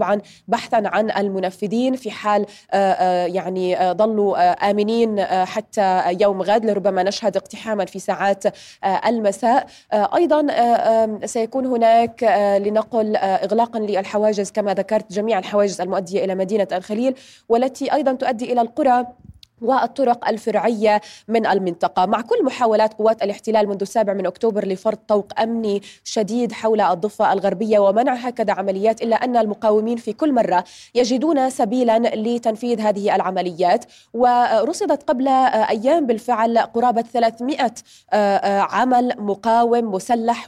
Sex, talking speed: female, 120 wpm